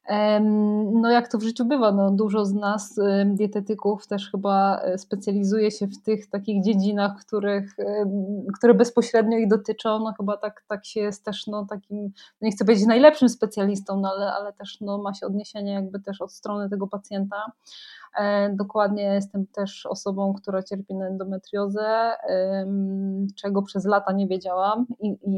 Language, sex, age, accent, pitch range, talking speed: Polish, female, 20-39, native, 195-215 Hz, 140 wpm